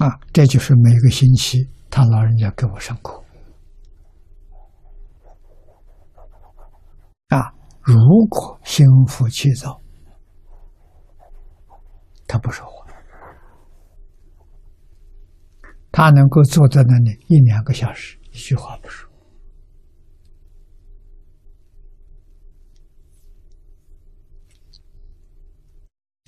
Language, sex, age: Chinese, male, 60-79